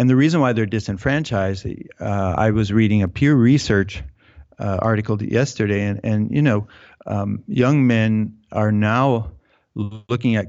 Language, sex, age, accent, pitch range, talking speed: English, male, 50-69, American, 105-120 Hz, 155 wpm